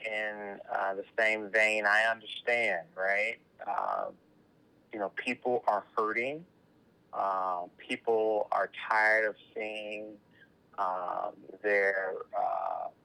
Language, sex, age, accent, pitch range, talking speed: English, male, 30-49, American, 95-110 Hz, 100 wpm